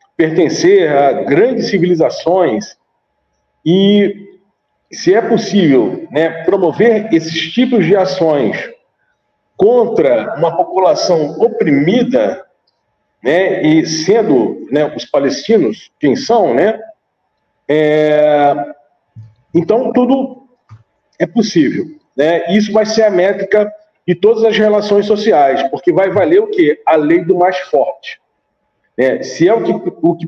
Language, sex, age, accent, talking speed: Portuguese, male, 40-59, Brazilian, 115 wpm